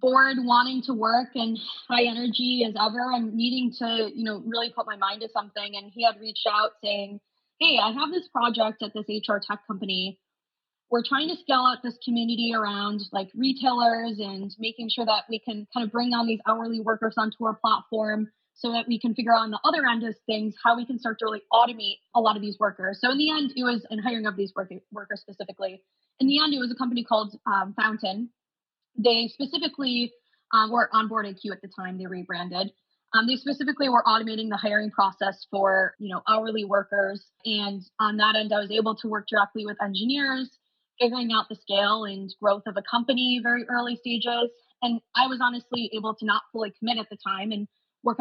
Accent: American